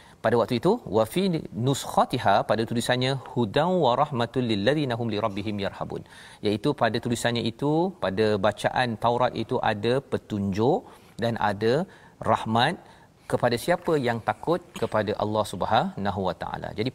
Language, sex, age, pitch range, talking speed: Malayalam, male, 40-59, 110-135 Hz, 140 wpm